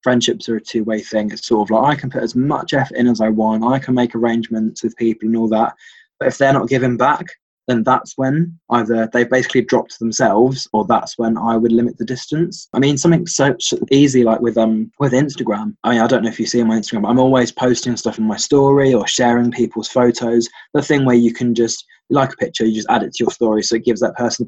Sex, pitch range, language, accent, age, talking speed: male, 115-130 Hz, English, British, 20-39, 255 wpm